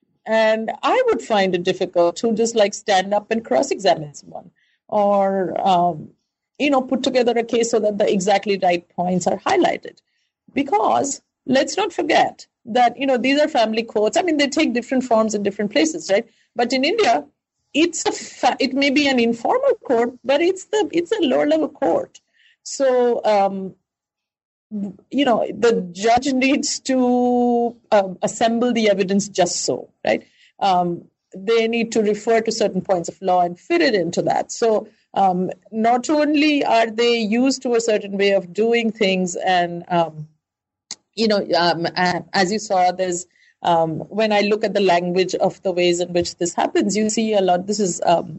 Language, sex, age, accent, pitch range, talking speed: English, female, 50-69, Indian, 190-260 Hz, 180 wpm